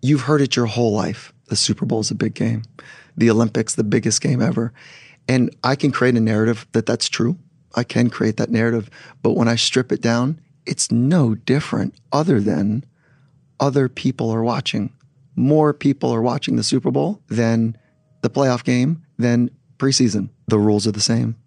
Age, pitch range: 30-49, 115-140 Hz